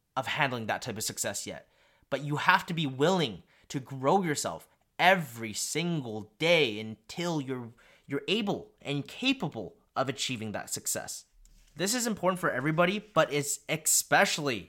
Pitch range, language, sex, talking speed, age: 135-175 Hz, English, male, 150 wpm, 30-49